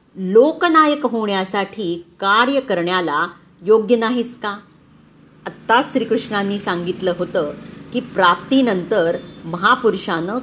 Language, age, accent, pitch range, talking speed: Marathi, 40-59, native, 185-255 Hz, 80 wpm